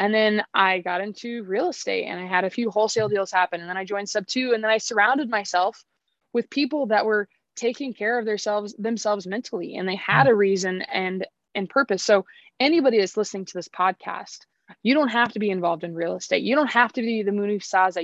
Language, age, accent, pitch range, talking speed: English, 20-39, American, 180-230 Hz, 225 wpm